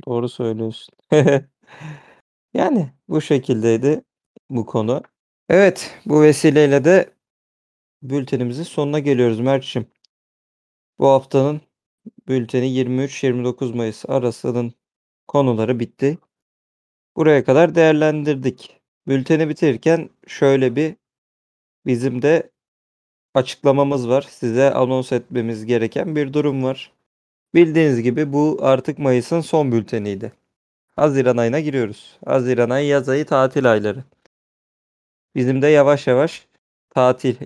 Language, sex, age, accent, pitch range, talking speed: Turkish, male, 40-59, native, 120-150 Hz, 100 wpm